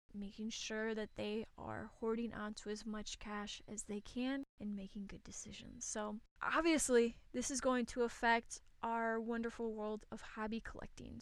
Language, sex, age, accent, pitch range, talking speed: English, female, 20-39, American, 215-240 Hz, 160 wpm